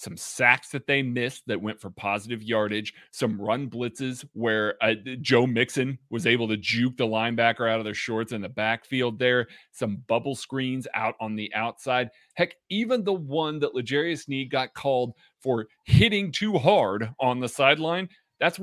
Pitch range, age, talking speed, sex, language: 120-160 Hz, 30-49, 175 wpm, male, English